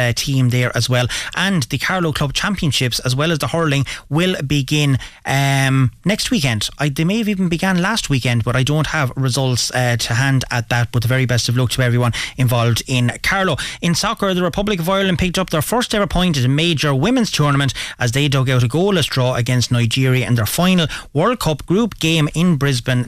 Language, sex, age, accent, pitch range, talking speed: English, male, 30-49, Irish, 125-160 Hz, 215 wpm